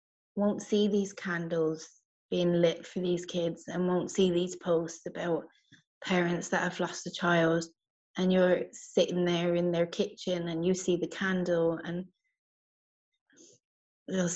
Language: English